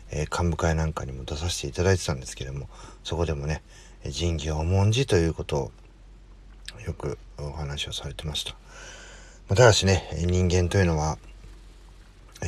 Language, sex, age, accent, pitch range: Japanese, male, 40-59, native, 80-95 Hz